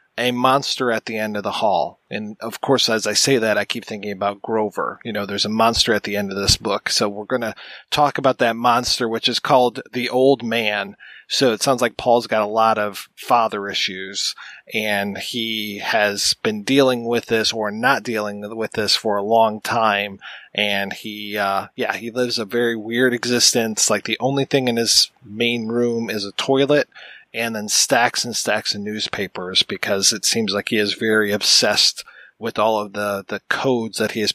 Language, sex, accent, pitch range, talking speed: English, male, American, 105-125 Hz, 205 wpm